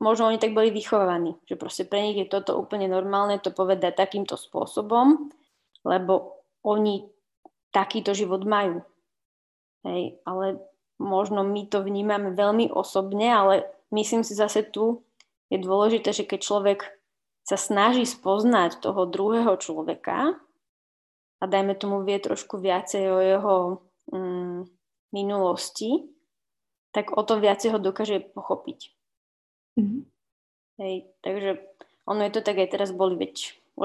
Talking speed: 130 wpm